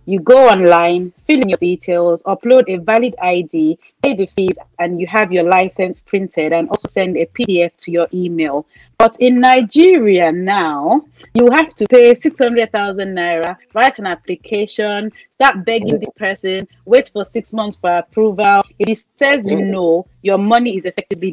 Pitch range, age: 180-240 Hz, 30-49